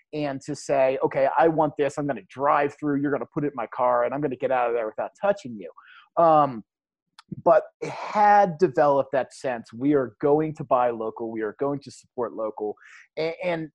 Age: 30-49